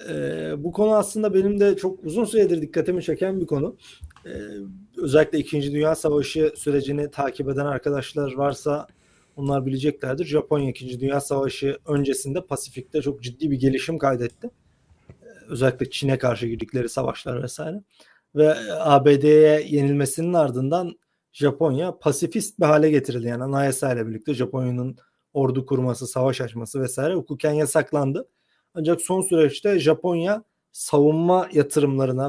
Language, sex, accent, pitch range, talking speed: Turkish, male, native, 130-155 Hz, 130 wpm